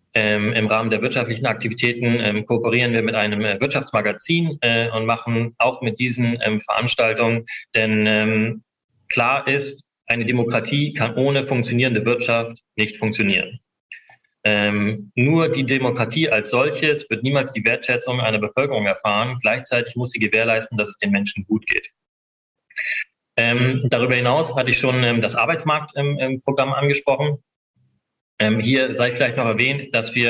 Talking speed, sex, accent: 130 wpm, male, German